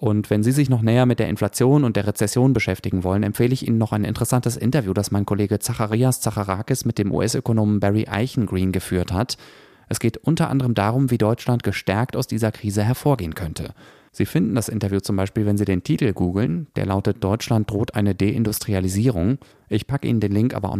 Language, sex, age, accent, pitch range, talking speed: German, male, 30-49, German, 100-120 Hz, 200 wpm